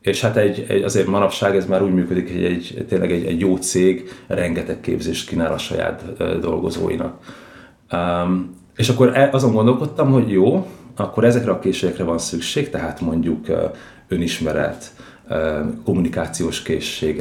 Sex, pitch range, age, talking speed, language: male, 85-100 Hz, 30-49, 160 wpm, Hungarian